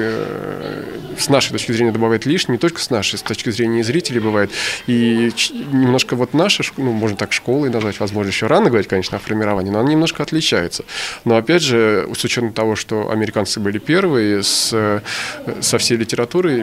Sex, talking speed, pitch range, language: male, 180 wpm, 105-125 Hz, Russian